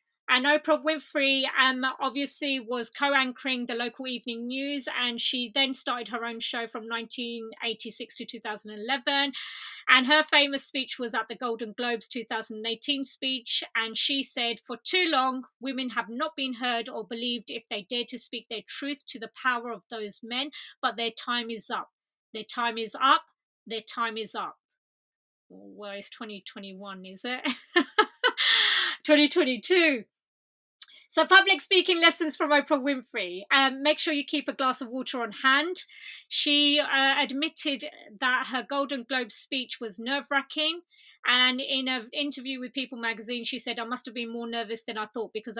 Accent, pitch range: British, 225-275 Hz